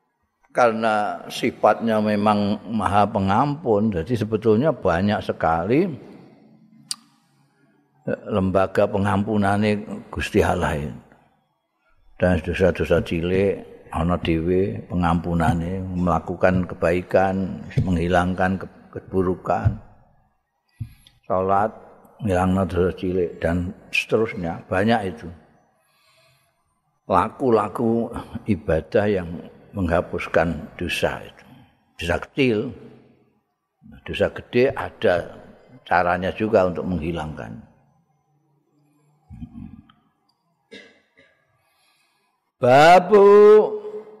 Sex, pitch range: male, 90-125 Hz